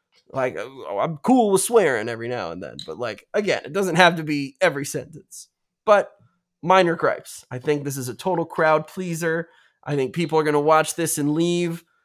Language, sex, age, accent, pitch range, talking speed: English, male, 20-39, American, 135-170 Hz, 200 wpm